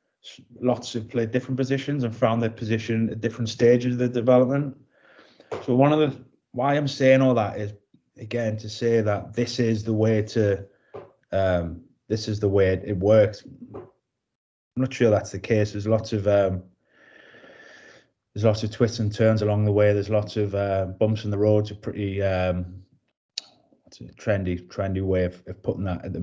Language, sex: English, male